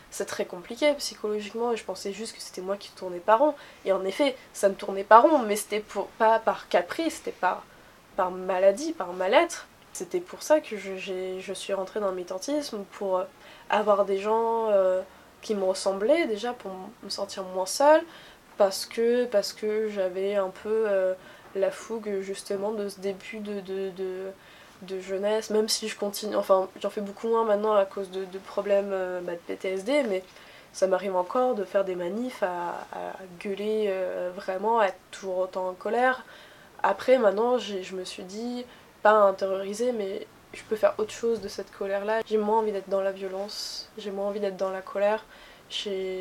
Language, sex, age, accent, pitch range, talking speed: French, female, 20-39, French, 190-220 Hz, 195 wpm